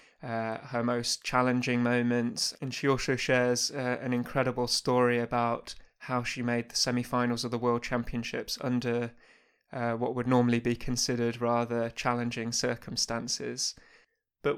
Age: 20-39